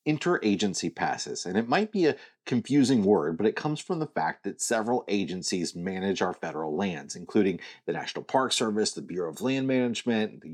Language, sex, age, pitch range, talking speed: English, male, 30-49, 95-155 Hz, 190 wpm